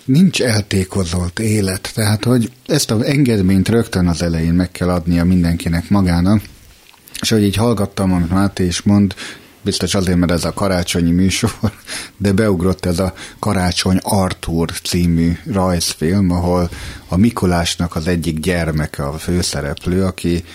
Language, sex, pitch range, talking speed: Hungarian, male, 85-100 Hz, 140 wpm